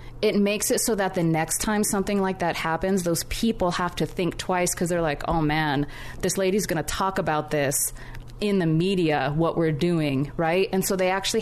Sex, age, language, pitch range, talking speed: female, 20-39, English, 165-220 Hz, 210 wpm